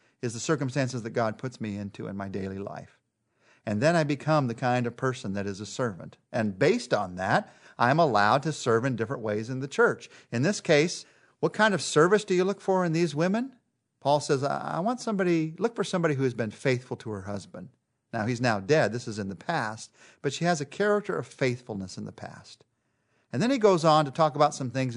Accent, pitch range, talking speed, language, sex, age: American, 120-175 Hz, 230 wpm, English, male, 40-59